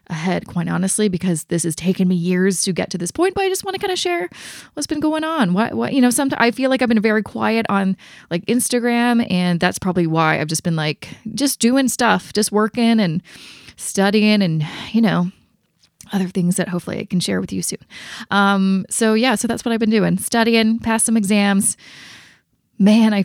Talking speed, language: 215 wpm, English